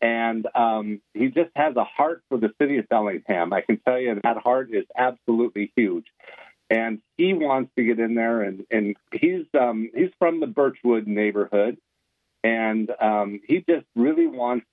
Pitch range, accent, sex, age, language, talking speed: 105-125 Hz, American, male, 50-69, English, 175 wpm